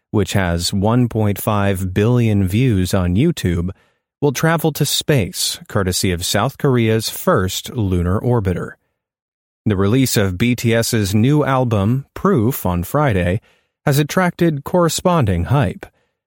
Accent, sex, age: American, male, 30-49